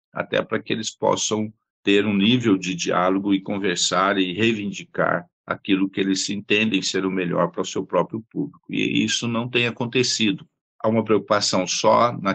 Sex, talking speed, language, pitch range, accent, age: male, 175 wpm, Portuguese, 95-110 Hz, Brazilian, 50-69